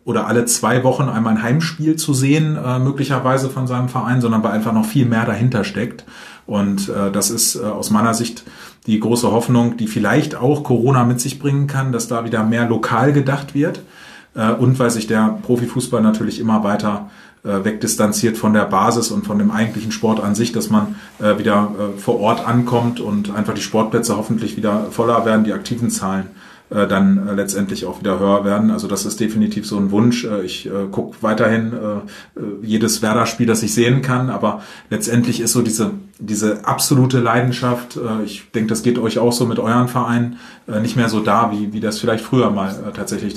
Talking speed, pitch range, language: 185 wpm, 110-125 Hz, German